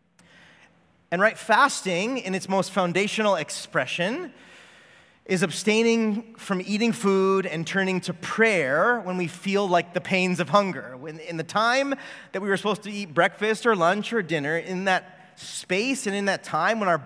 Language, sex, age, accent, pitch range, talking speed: English, male, 30-49, American, 170-220 Hz, 170 wpm